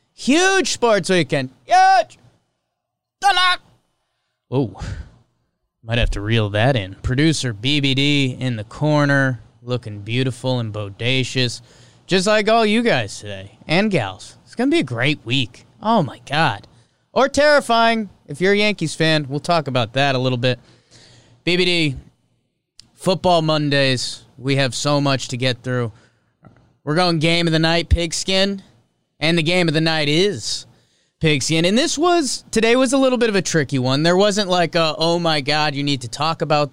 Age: 20-39